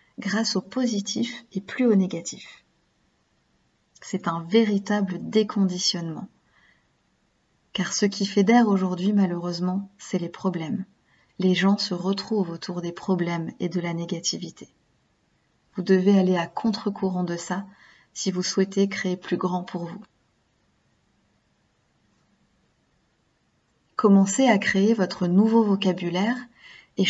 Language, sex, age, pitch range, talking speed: French, female, 30-49, 185-220 Hz, 120 wpm